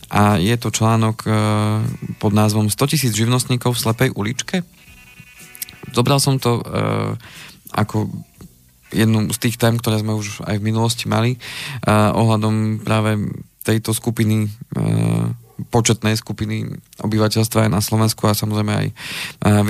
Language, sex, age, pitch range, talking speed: Slovak, male, 20-39, 105-120 Hz, 135 wpm